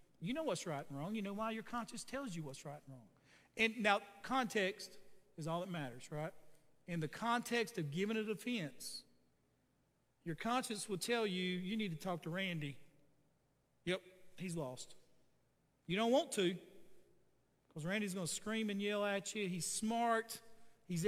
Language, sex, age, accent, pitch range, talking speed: English, male, 40-59, American, 180-230 Hz, 180 wpm